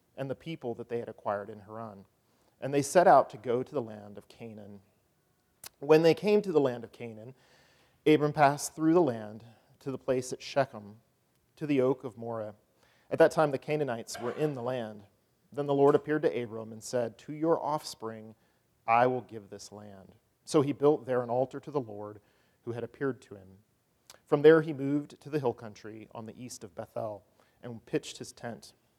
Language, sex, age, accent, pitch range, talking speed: English, male, 40-59, American, 110-145 Hz, 205 wpm